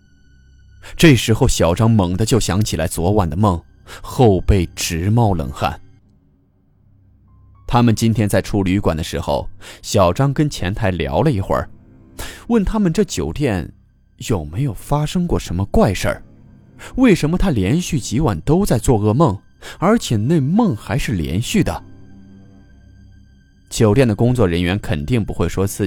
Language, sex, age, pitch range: Chinese, male, 20-39, 90-115 Hz